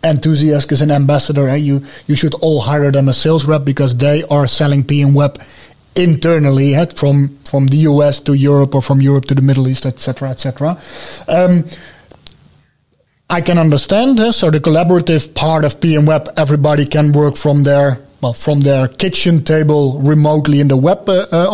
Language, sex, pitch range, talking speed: English, male, 140-165 Hz, 190 wpm